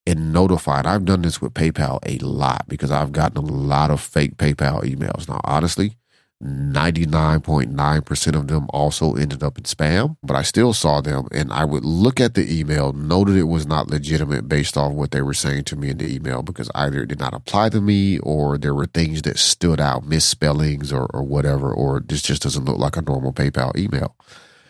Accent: American